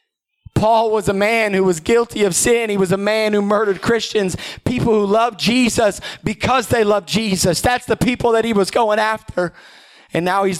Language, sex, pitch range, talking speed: English, male, 175-220 Hz, 200 wpm